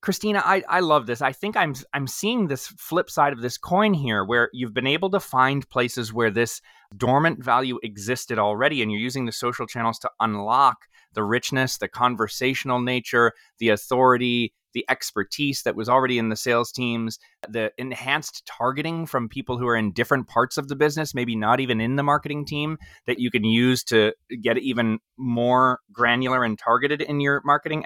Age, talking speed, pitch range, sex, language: 20-39, 190 wpm, 115-140 Hz, male, English